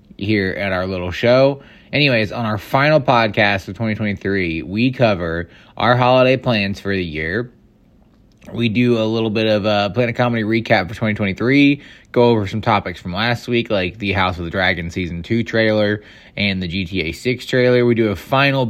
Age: 20-39